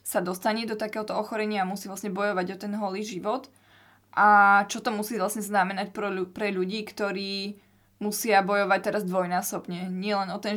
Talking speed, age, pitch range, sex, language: 170 wpm, 20-39, 195-215 Hz, female, Slovak